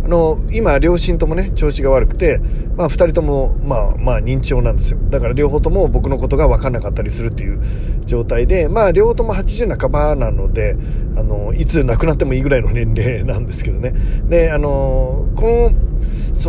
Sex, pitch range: male, 110-150 Hz